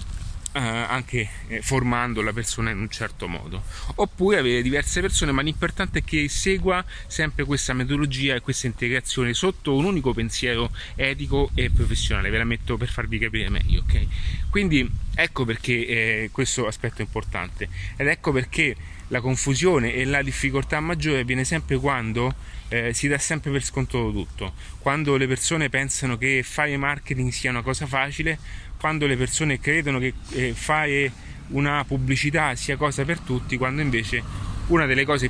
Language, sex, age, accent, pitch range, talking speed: Italian, male, 30-49, native, 115-140 Hz, 165 wpm